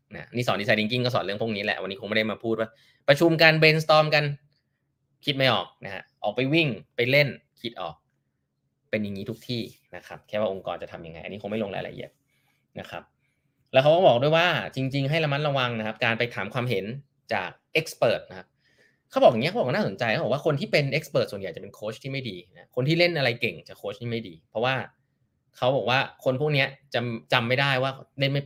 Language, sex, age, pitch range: Thai, male, 20-39, 115-150 Hz